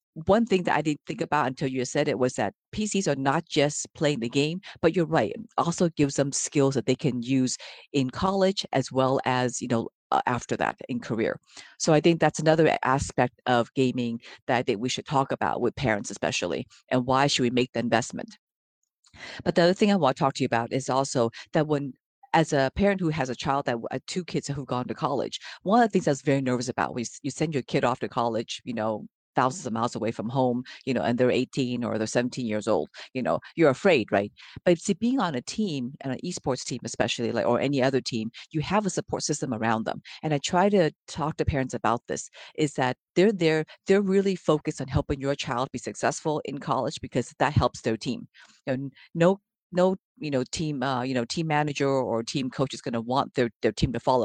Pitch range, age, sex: 125-155 Hz, 50-69, female